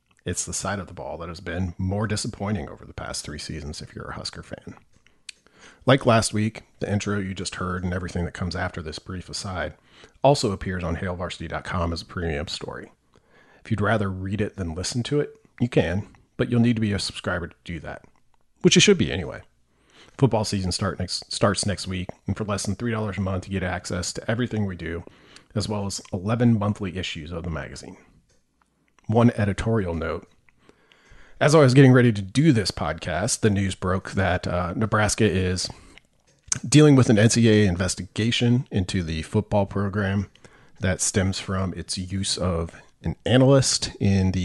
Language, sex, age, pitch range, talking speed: English, male, 40-59, 90-110 Hz, 190 wpm